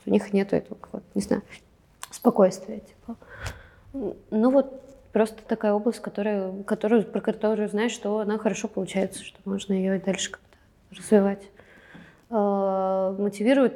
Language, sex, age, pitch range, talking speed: Russian, female, 20-39, 190-220 Hz, 130 wpm